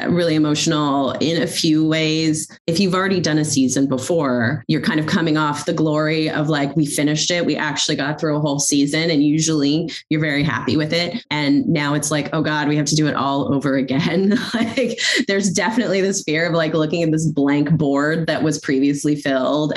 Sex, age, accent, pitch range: female, 20-39, American, 140-170 Hz